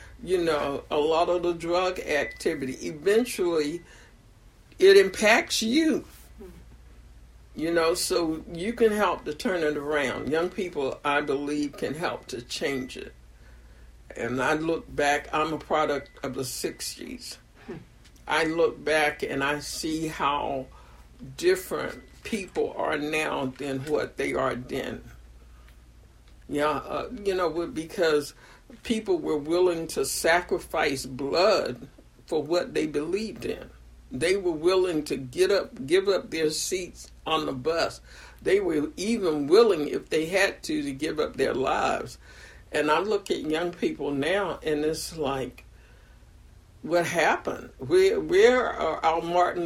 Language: English